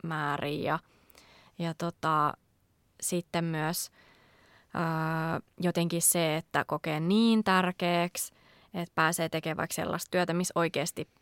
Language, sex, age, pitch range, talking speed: Finnish, female, 20-39, 165-195 Hz, 100 wpm